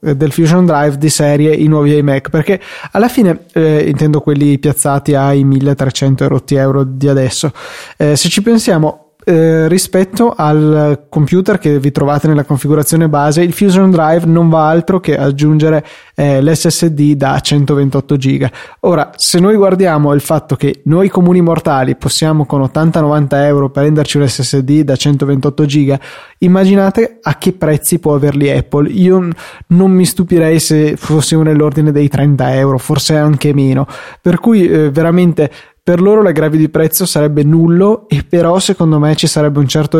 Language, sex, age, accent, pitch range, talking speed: Italian, male, 20-39, native, 145-165 Hz, 160 wpm